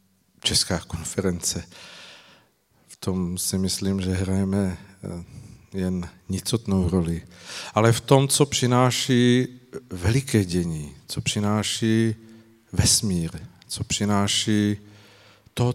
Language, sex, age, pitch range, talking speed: Czech, male, 50-69, 100-115 Hz, 90 wpm